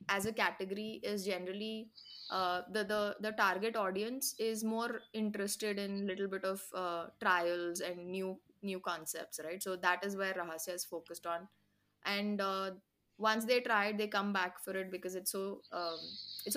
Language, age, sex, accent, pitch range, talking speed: English, 20-39, female, Indian, 175-215 Hz, 180 wpm